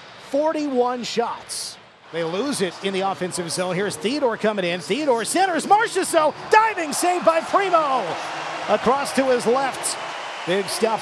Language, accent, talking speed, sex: English, American, 140 wpm, male